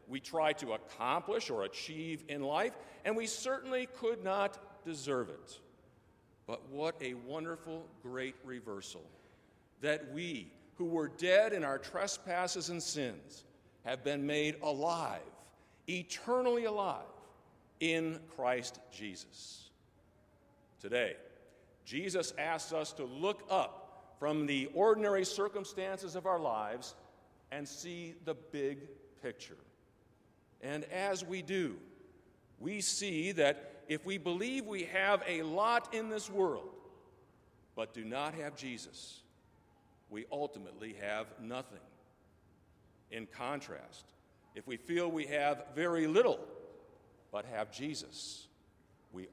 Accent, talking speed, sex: American, 120 wpm, male